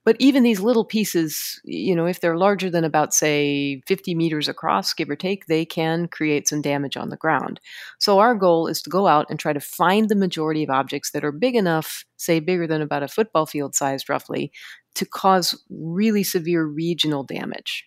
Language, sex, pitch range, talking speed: English, female, 150-185 Hz, 205 wpm